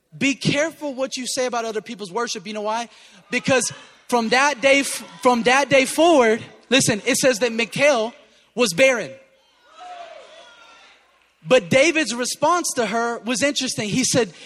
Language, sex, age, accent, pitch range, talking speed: English, male, 20-39, American, 215-295 Hz, 150 wpm